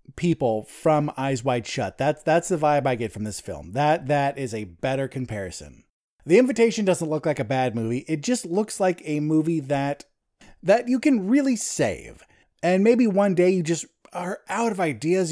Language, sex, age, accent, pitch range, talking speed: English, male, 30-49, American, 150-200 Hz, 195 wpm